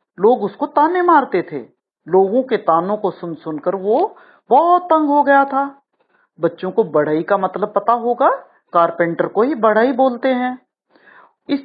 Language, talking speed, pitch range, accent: Hindi, 160 wpm, 175-270 Hz, native